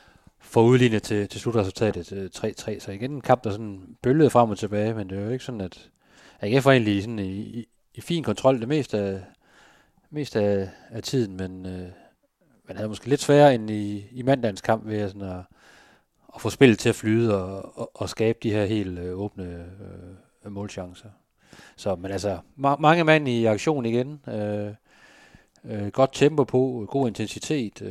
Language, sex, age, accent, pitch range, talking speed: Danish, male, 30-49, native, 100-120 Hz, 185 wpm